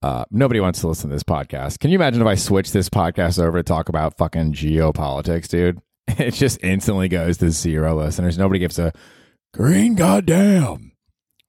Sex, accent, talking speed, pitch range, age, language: male, American, 185 wpm, 90-125 Hz, 30-49, English